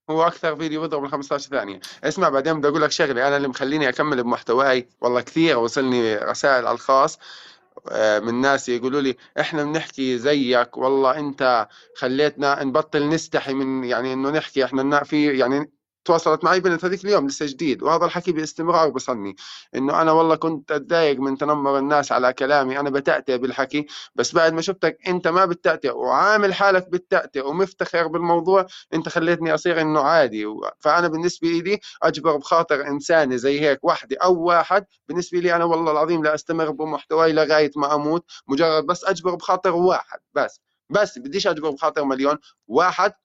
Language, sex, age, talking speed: Arabic, male, 20-39, 160 wpm